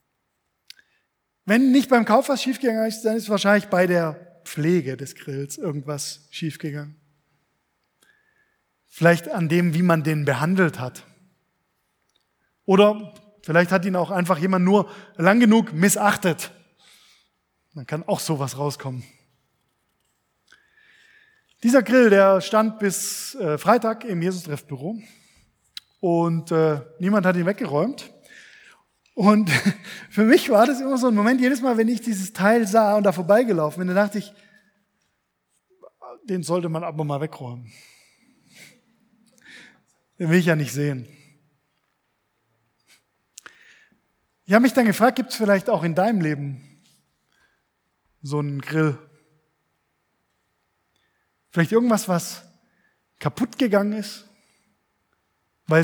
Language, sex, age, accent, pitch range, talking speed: German, male, 20-39, German, 160-220 Hz, 120 wpm